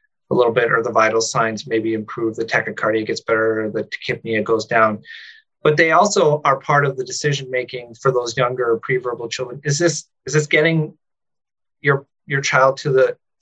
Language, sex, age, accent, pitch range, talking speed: English, male, 30-49, American, 130-155 Hz, 185 wpm